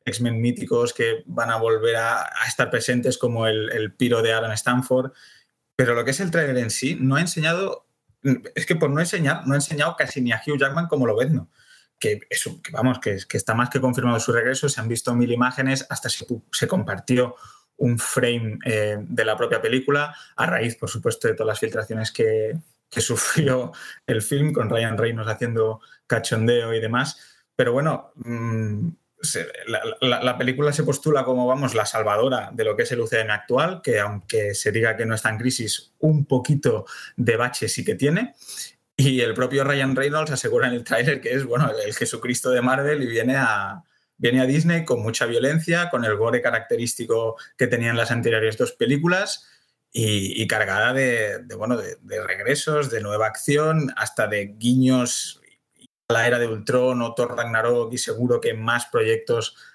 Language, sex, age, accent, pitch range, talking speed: Spanish, male, 20-39, Spanish, 115-150 Hz, 190 wpm